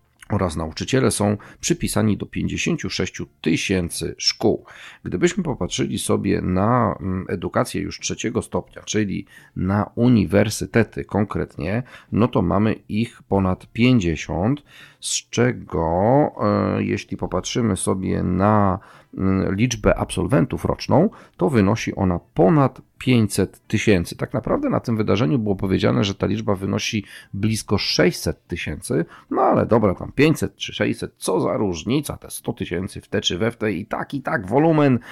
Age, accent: 40-59, native